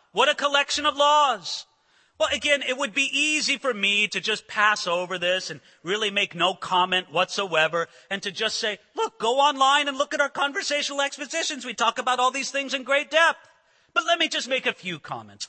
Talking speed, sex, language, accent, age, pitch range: 210 wpm, male, English, American, 40-59, 195-290 Hz